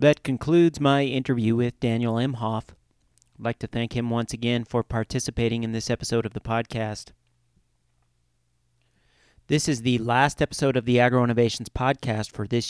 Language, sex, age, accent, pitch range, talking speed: English, male, 40-59, American, 110-130 Hz, 160 wpm